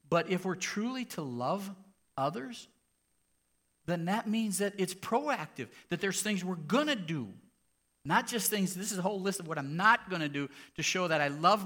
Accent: American